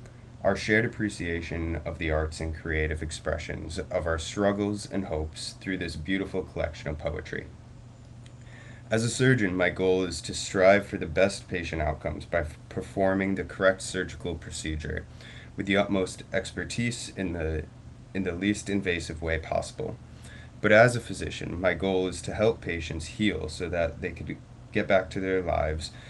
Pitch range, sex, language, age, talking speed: 85-110 Hz, male, English, 20-39, 165 wpm